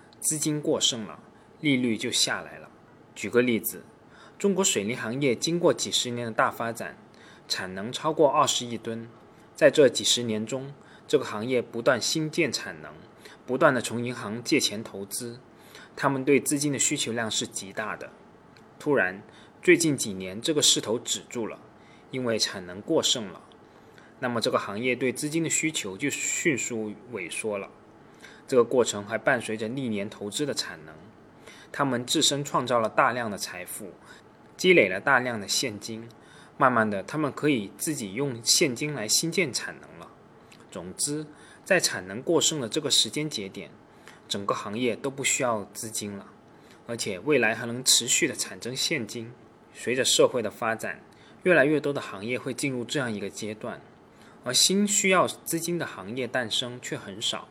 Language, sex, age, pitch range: Chinese, male, 20-39, 110-150 Hz